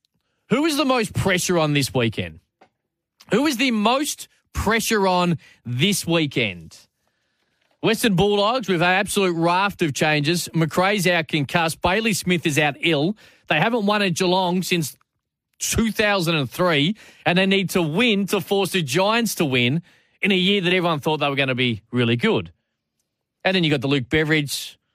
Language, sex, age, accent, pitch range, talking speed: English, male, 20-39, Australian, 145-190 Hz, 170 wpm